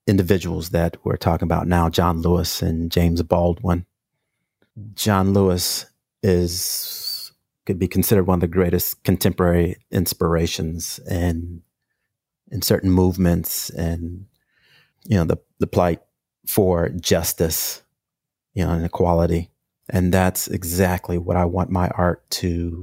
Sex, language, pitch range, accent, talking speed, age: male, English, 85-105 Hz, American, 125 wpm, 30-49